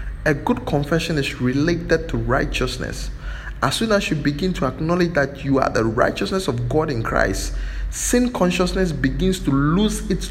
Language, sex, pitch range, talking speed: English, male, 130-185 Hz, 170 wpm